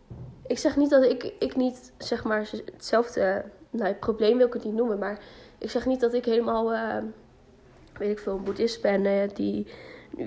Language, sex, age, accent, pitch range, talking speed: Dutch, female, 20-39, Dutch, 215-255 Hz, 205 wpm